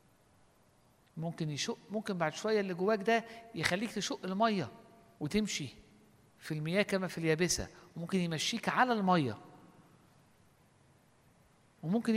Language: Arabic